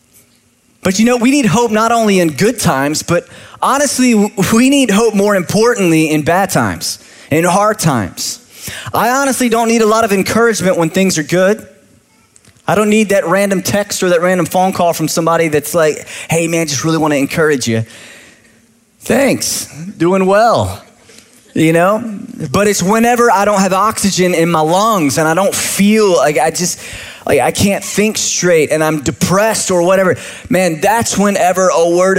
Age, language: 20-39, English